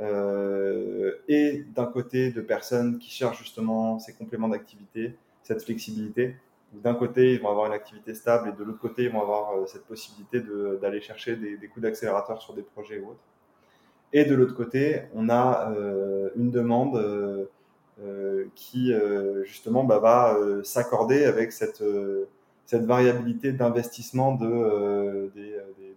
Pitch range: 100-125 Hz